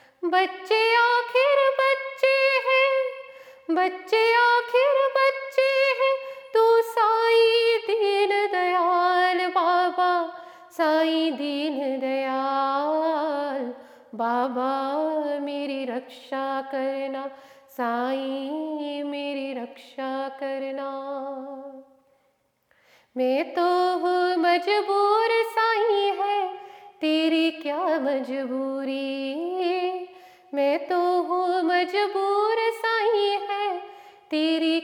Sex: female